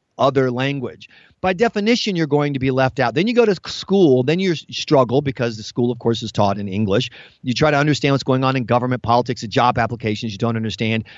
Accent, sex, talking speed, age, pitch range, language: American, male, 230 wpm, 40-59, 125-175 Hz, English